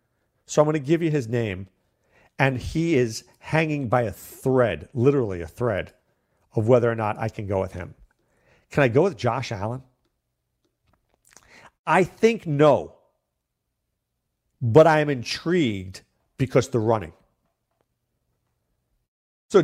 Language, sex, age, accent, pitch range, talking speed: English, male, 50-69, American, 120-175 Hz, 135 wpm